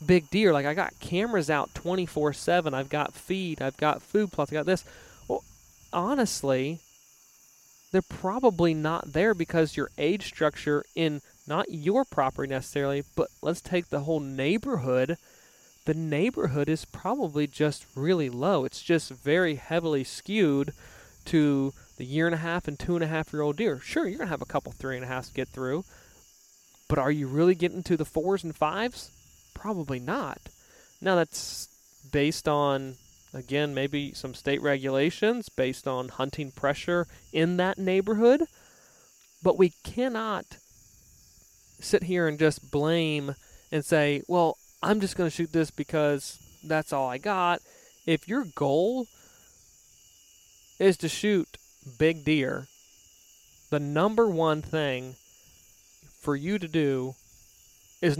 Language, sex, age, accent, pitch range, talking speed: English, male, 20-39, American, 135-175 Hz, 150 wpm